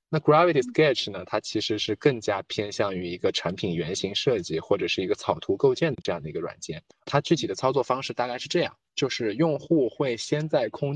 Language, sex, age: Chinese, male, 20-39